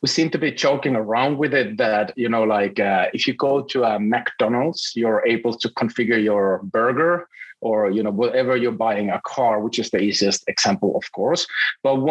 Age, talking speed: 30-49, 205 wpm